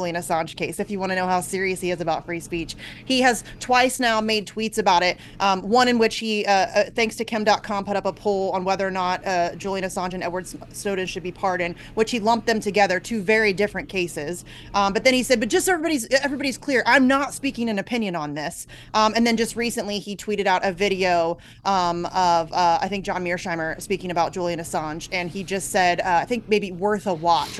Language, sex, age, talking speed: English, female, 30-49, 235 wpm